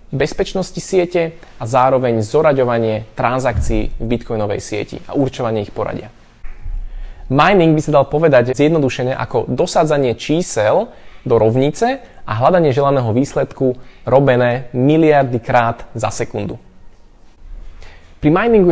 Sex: male